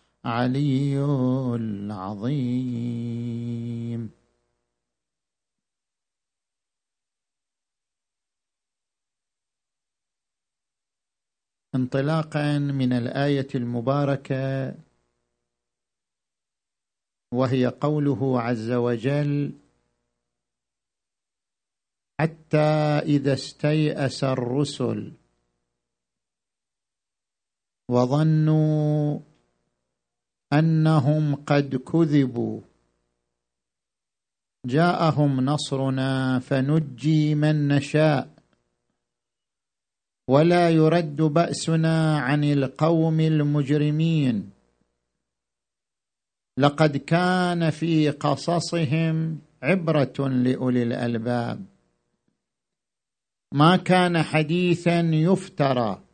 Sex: male